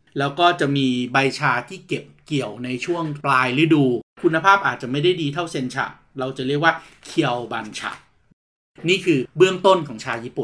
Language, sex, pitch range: Thai, male, 135-175 Hz